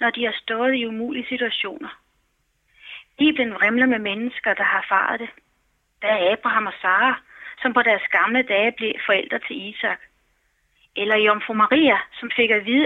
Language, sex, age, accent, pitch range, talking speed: Danish, female, 30-49, native, 225-270 Hz, 170 wpm